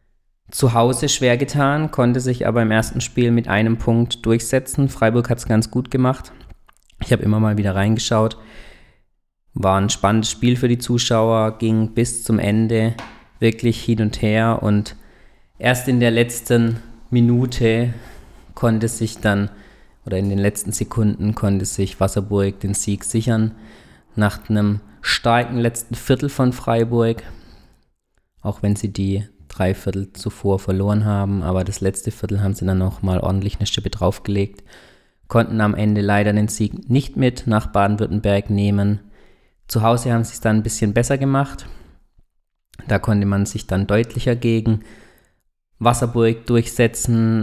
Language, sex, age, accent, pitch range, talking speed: German, male, 20-39, German, 100-115 Hz, 150 wpm